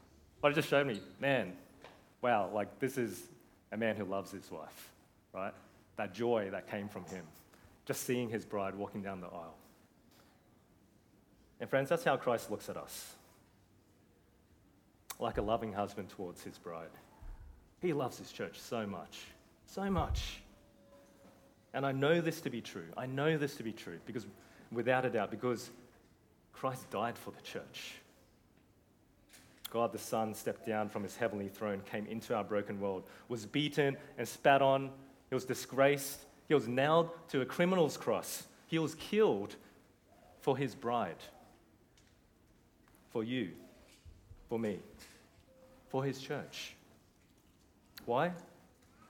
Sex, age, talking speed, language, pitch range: male, 30-49, 145 wpm, English, 100-135 Hz